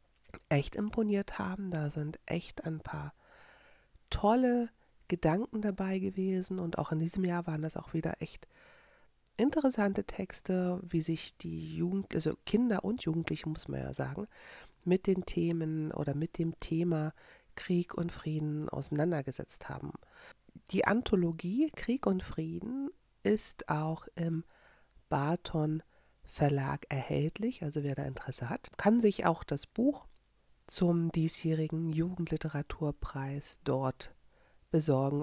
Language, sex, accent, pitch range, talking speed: German, female, German, 150-190 Hz, 125 wpm